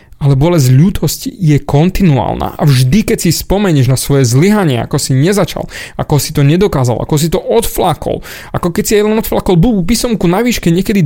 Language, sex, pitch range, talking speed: Slovak, male, 130-175 Hz, 185 wpm